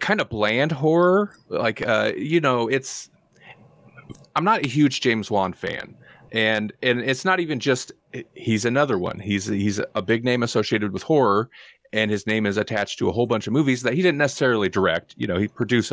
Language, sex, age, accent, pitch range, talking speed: English, male, 30-49, American, 105-140 Hz, 200 wpm